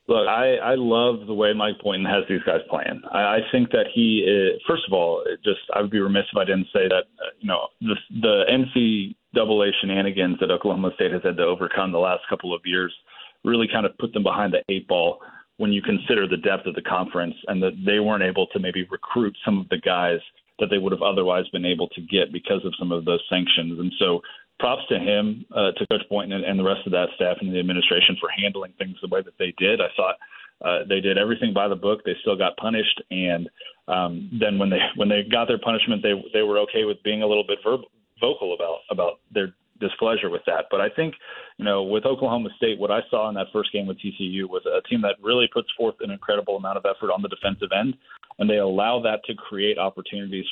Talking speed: 240 wpm